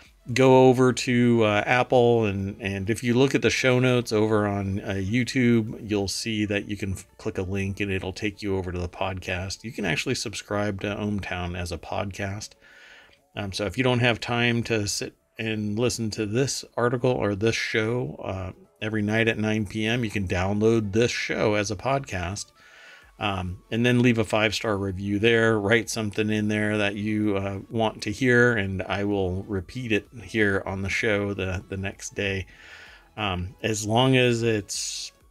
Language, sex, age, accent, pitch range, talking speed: English, male, 40-59, American, 95-115 Hz, 190 wpm